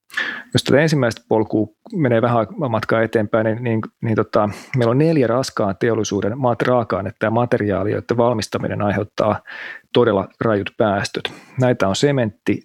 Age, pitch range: 30-49, 100-125 Hz